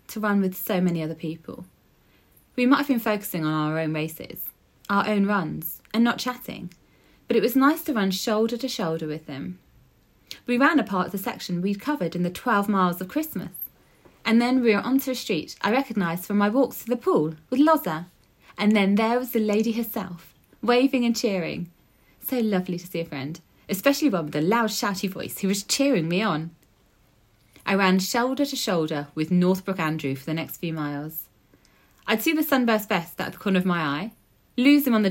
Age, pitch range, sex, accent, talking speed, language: 30-49, 160-240 Hz, female, British, 205 wpm, English